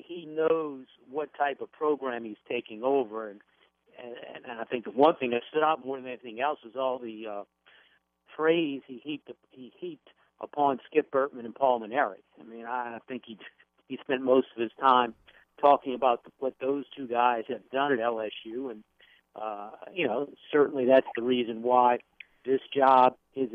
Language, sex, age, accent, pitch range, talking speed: English, male, 50-69, American, 115-140 Hz, 185 wpm